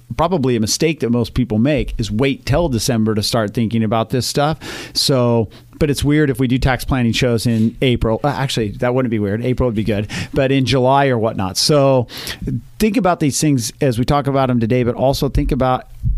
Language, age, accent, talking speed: English, 40-59, American, 215 wpm